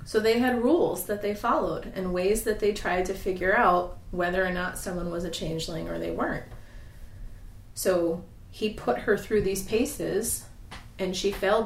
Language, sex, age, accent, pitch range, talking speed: English, female, 30-49, American, 165-205 Hz, 180 wpm